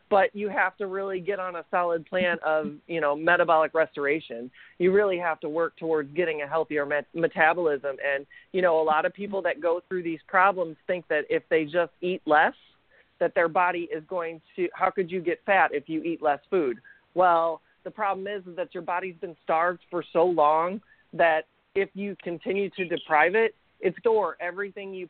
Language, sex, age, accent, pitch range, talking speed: English, male, 40-59, American, 160-195 Hz, 200 wpm